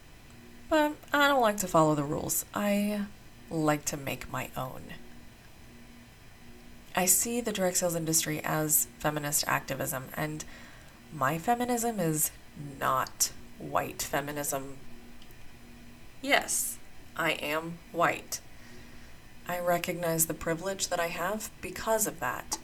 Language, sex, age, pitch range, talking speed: English, female, 30-49, 155-185 Hz, 120 wpm